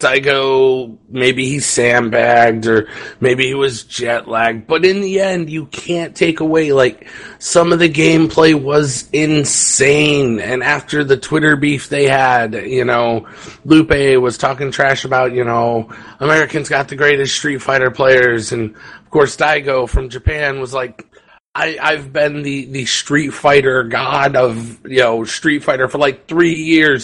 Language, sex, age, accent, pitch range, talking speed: English, male, 30-49, American, 125-155 Hz, 160 wpm